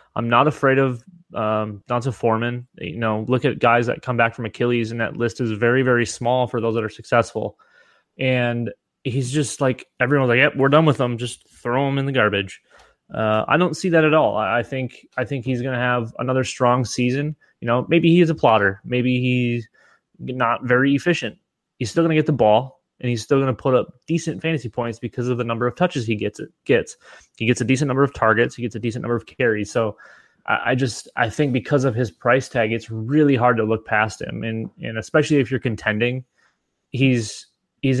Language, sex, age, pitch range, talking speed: English, male, 20-39, 115-135 Hz, 220 wpm